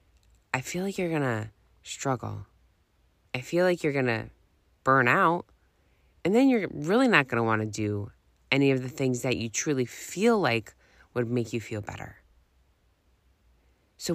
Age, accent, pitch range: 20-39, American, 100-160 Hz